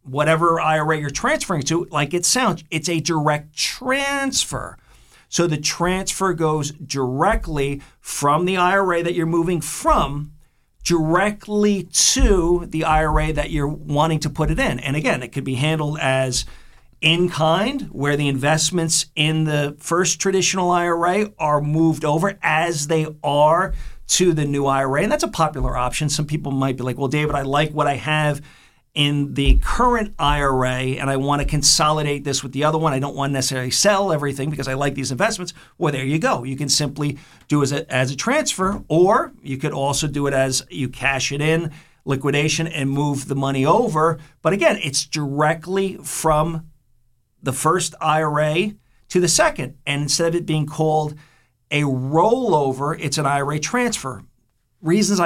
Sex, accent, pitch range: male, American, 140-170 Hz